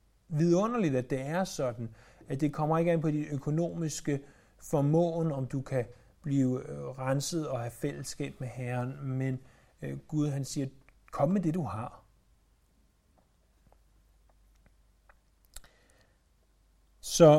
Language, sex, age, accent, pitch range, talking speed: Danish, male, 30-49, native, 130-170 Hz, 115 wpm